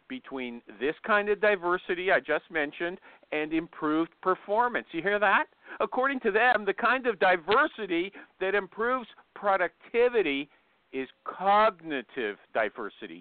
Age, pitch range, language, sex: 50-69, 155-225 Hz, English, male